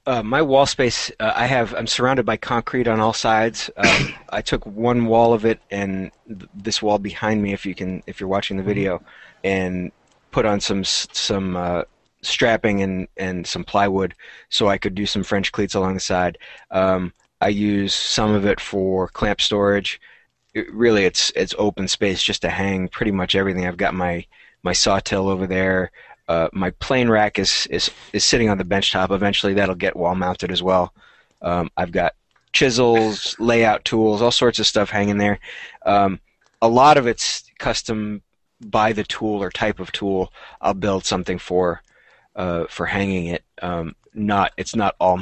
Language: English